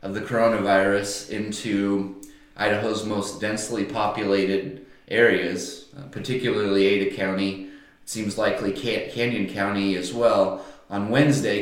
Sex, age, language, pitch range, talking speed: male, 30-49, English, 100-130 Hz, 110 wpm